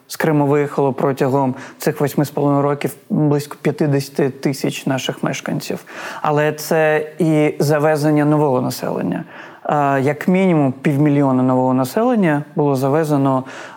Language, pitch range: Ukrainian, 145-175 Hz